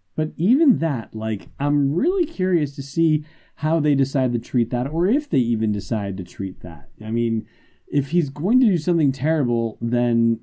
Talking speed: 190 wpm